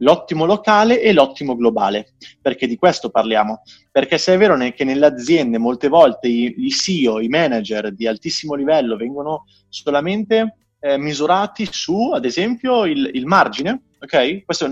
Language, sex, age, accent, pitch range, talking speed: Italian, male, 30-49, native, 130-210 Hz, 155 wpm